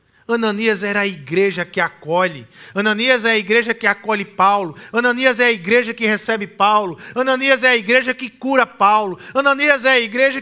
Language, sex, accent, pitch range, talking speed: Portuguese, male, Brazilian, 225-280 Hz, 180 wpm